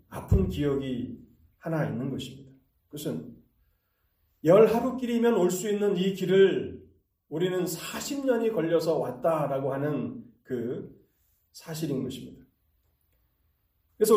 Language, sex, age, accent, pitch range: Korean, male, 30-49, native, 115-185 Hz